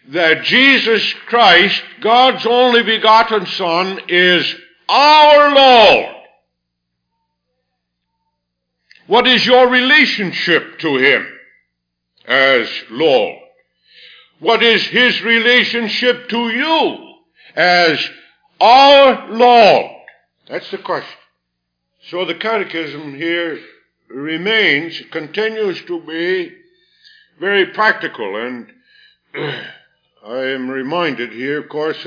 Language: English